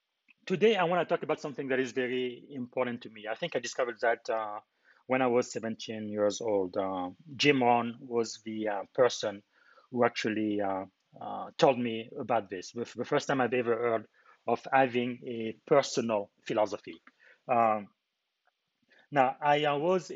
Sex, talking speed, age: male, 170 wpm, 30-49